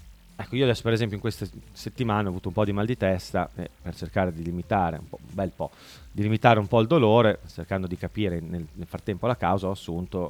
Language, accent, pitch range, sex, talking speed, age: Italian, native, 90-120 Hz, male, 245 wpm, 30-49